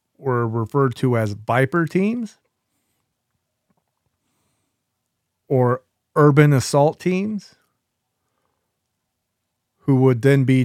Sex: male